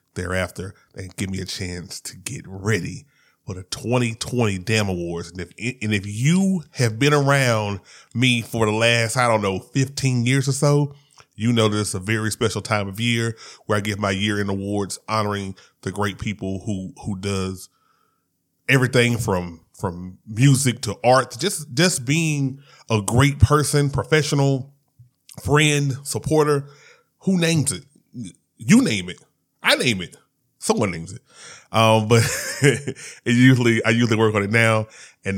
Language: English